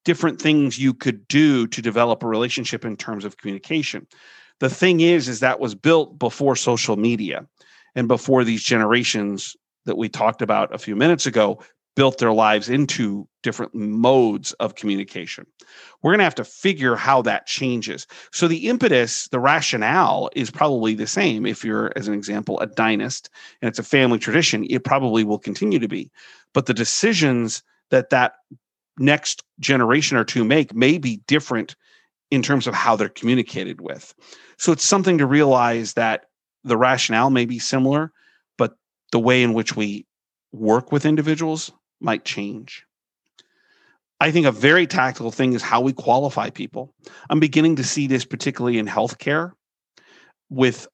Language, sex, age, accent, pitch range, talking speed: English, male, 40-59, American, 115-145 Hz, 165 wpm